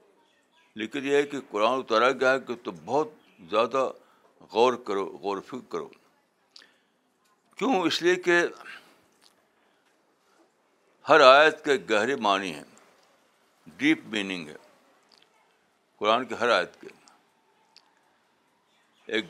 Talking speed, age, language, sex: 110 wpm, 60-79, Urdu, male